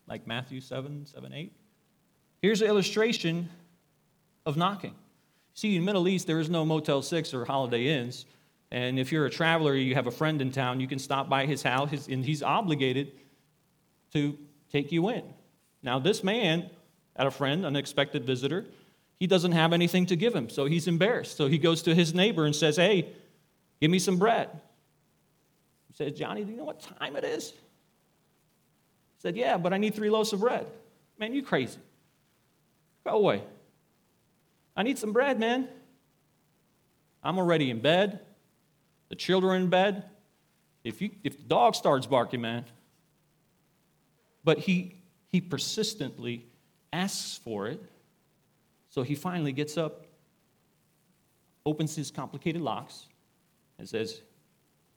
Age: 40-59